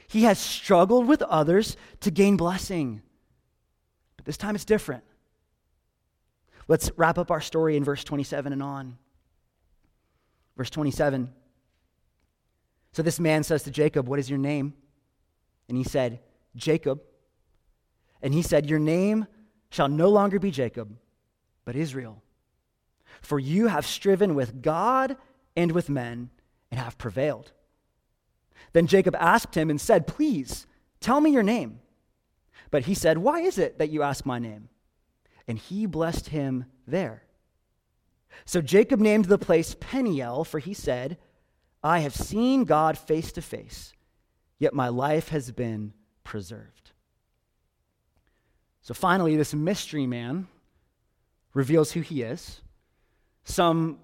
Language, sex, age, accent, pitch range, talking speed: English, male, 30-49, American, 125-175 Hz, 135 wpm